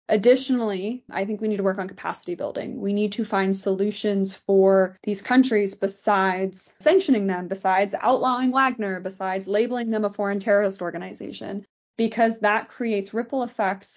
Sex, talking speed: female, 155 wpm